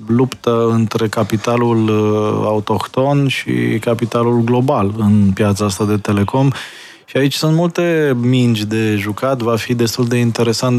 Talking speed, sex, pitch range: 135 wpm, male, 110-125 Hz